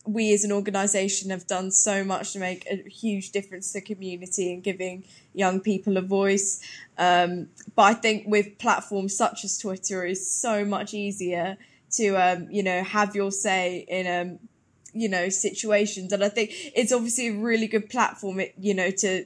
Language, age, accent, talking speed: English, 10-29, British, 180 wpm